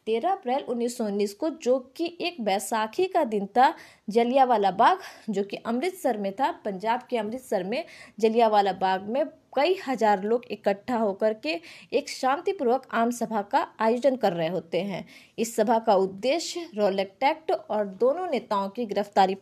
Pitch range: 205-280 Hz